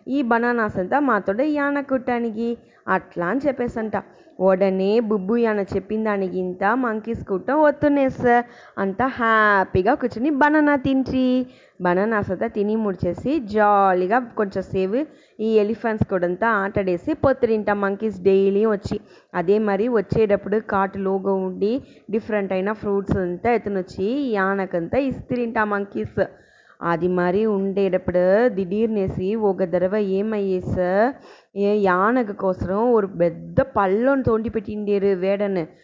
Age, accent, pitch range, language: 20-39, Indian, 195-250 Hz, English